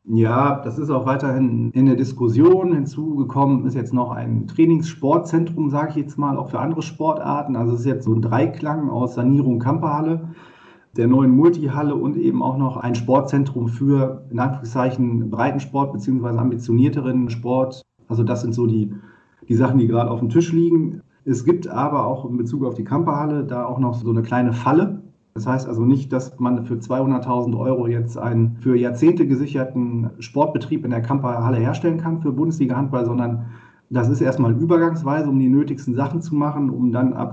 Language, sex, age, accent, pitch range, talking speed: German, male, 40-59, German, 120-140 Hz, 185 wpm